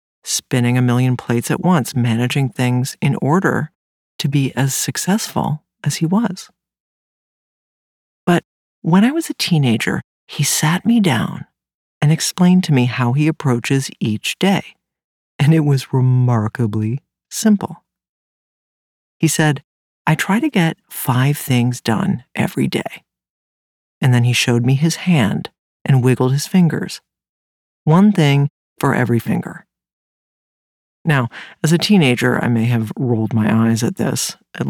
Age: 50-69